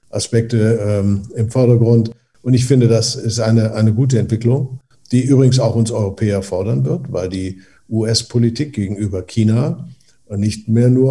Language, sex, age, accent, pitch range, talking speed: German, male, 50-69, German, 105-120 Hz, 150 wpm